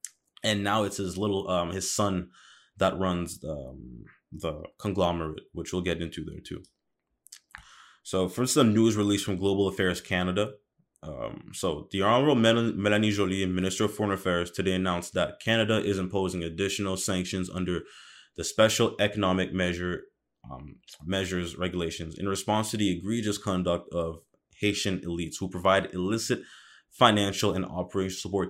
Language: English